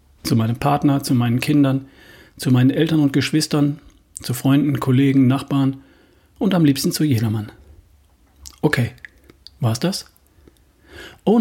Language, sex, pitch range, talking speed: German, male, 115-155 Hz, 125 wpm